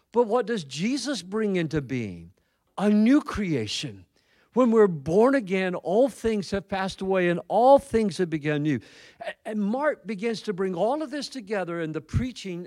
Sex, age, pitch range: male, 50-69, 135-210 Hz